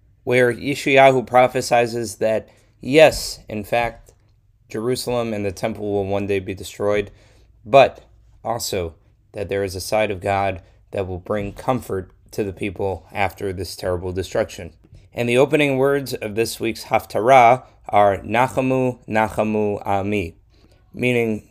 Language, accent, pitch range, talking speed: English, American, 100-120 Hz, 135 wpm